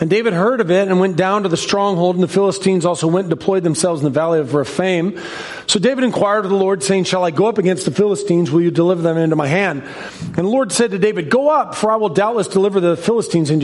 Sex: male